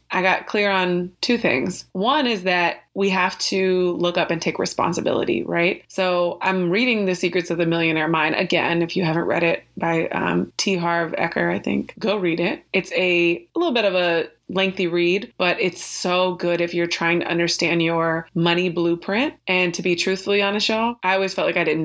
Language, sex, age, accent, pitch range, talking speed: English, female, 20-39, American, 170-190 Hz, 210 wpm